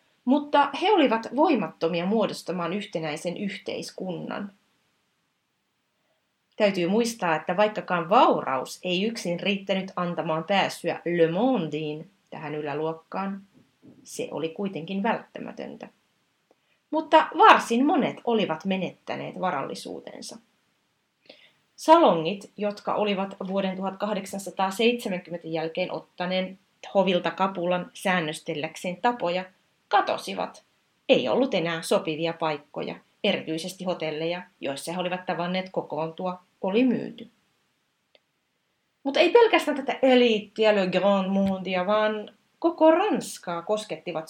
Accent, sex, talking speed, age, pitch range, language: native, female, 90 wpm, 30-49, 175-225 Hz, Finnish